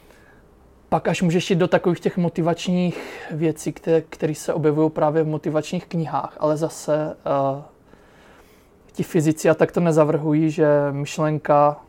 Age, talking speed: 20-39, 140 wpm